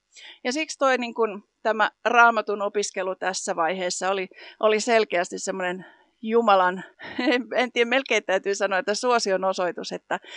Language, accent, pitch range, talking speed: Finnish, native, 195-245 Hz, 140 wpm